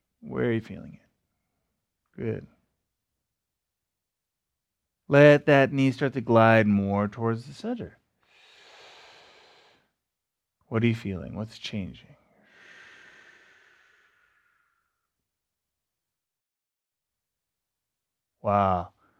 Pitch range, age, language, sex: 120-175 Hz, 30-49, English, male